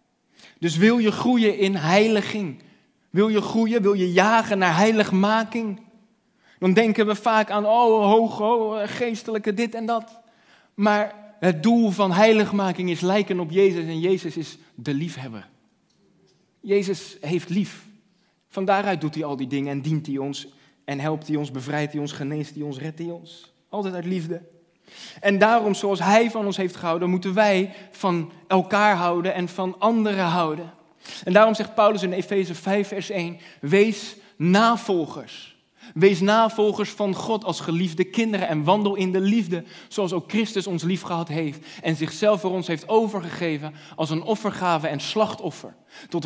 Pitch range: 170-210 Hz